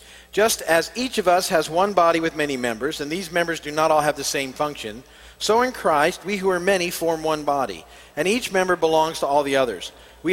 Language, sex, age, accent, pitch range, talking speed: English, male, 50-69, American, 145-195 Hz, 230 wpm